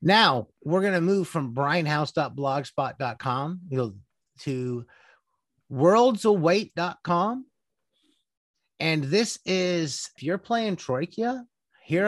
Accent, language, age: American, English, 30-49